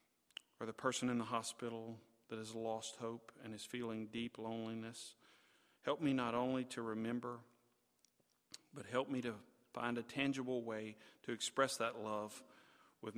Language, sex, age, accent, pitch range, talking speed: English, male, 40-59, American, 110-125 Hz, 155 wpm